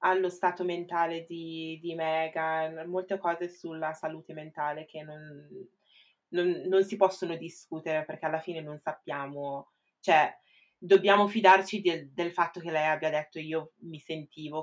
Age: 20-39